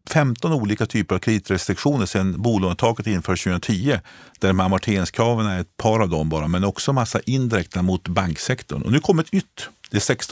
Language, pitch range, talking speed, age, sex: Swedish, 90-120 Hz, 165 wpm, 50-69, male